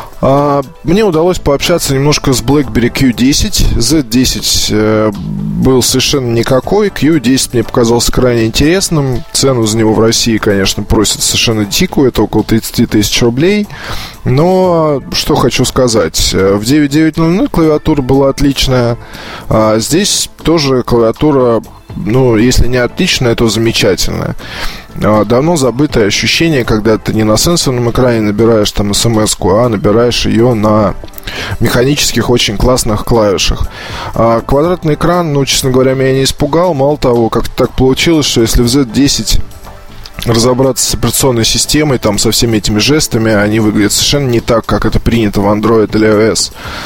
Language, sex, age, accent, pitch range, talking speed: Russian, male, 20-39, native, 110-140 Hz, 135 wpm